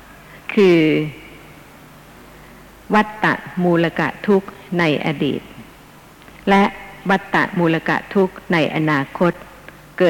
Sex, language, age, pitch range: female, Thai, 60-79, 160-205 Hz